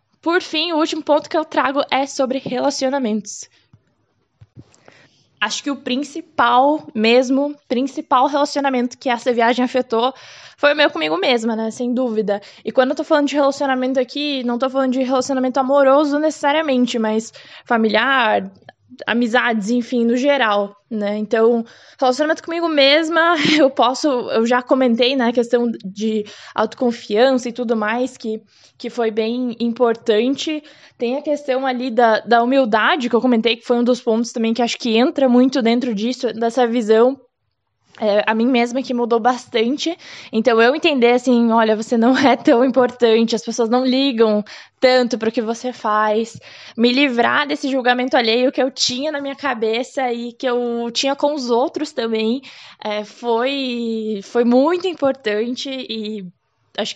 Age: 10-29